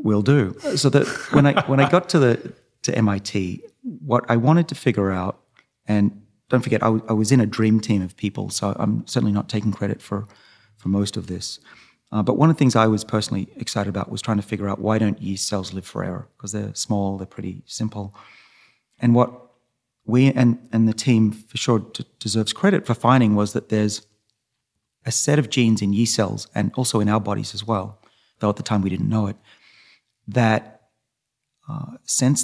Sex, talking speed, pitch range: male, 210 wpm, 105-125 Hz